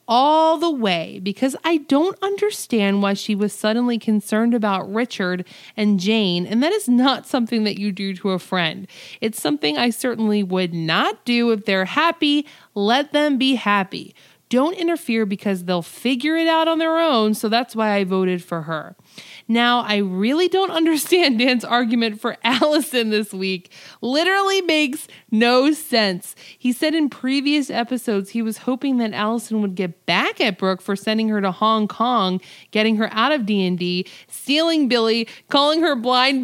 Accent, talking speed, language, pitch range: American, 170 wpm, English, 200-280 Hz